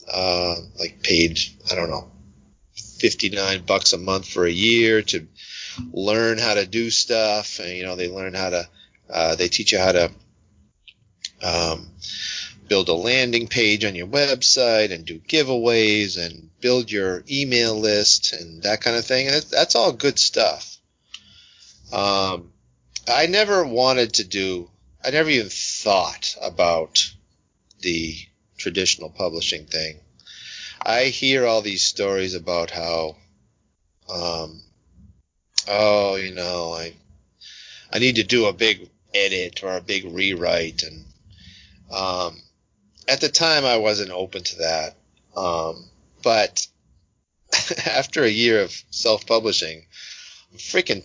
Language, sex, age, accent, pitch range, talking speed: English, male, 30-49, American, 85-110 Hz, 135 wpm